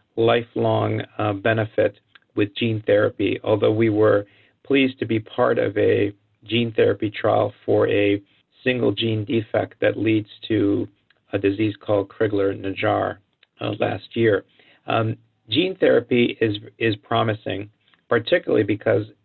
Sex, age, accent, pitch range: male, 50-69, American, 105-115 Hz